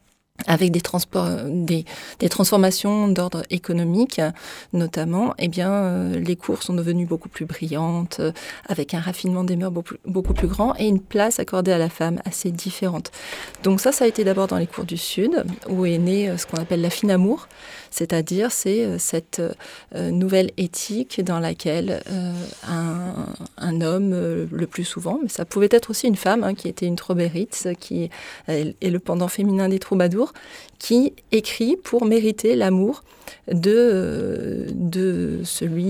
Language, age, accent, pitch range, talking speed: French, 30-49, French, 175-215 Hz, 170 wpm